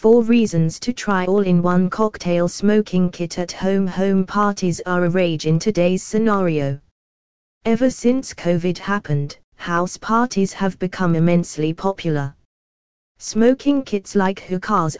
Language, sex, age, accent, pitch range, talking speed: English, female, 20-39, British, 155-210 Hz, 130 wpm